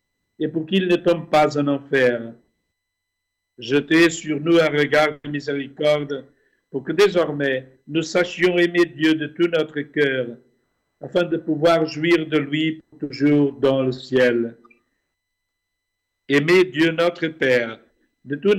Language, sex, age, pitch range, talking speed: French, male, 60-79, 125-160 Hz, 135 wpm